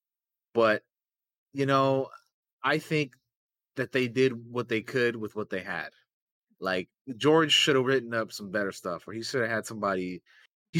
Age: 30-49